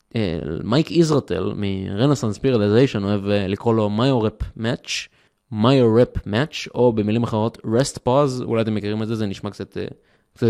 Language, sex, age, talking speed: Hebrew, male, 20-39, 145 wpm